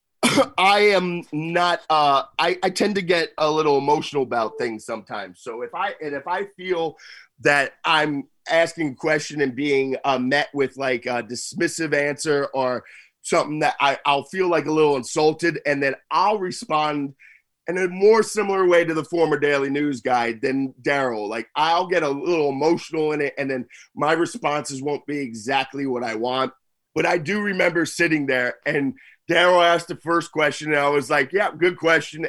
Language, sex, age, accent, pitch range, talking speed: English, male, 30-49, American, 135-165 Hz, 185 wpm